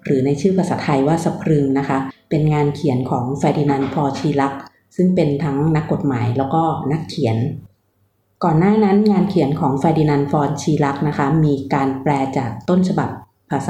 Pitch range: 135-165 Hz